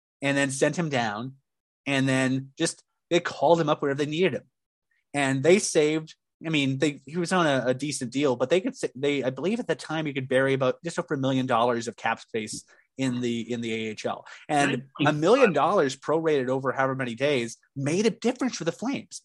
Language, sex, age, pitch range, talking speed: English, male, 30-49, 130-170 Hz, 220 wpm